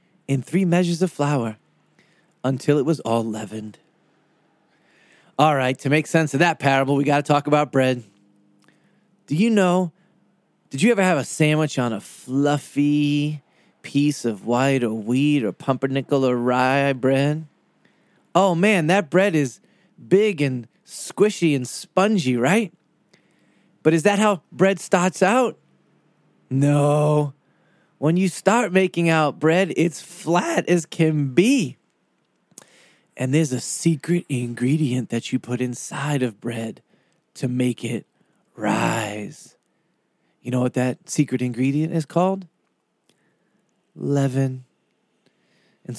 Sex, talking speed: male, 130 wpm